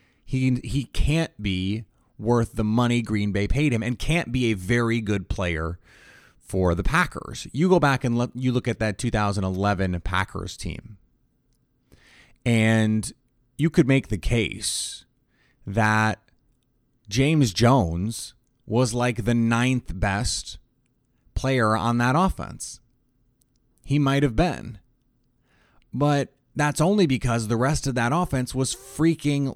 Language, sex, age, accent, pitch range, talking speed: English, male, 30-49, American, 105-135 Hz, 135 wpm